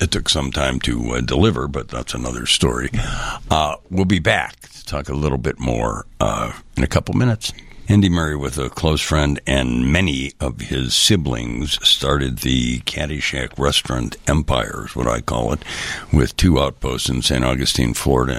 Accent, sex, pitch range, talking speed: American, male, 65-80 Hz, 175 wpm